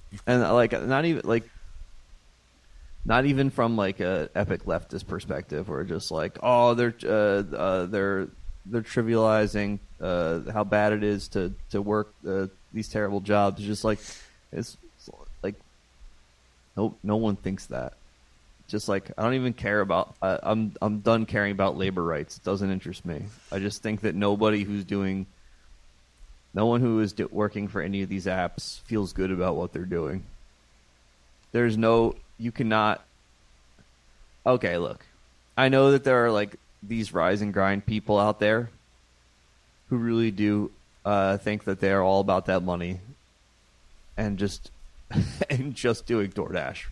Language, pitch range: English, 85-110 Hz